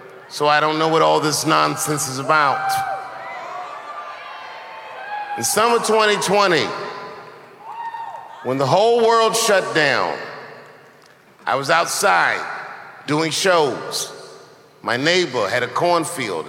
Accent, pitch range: American, 140-205 Hz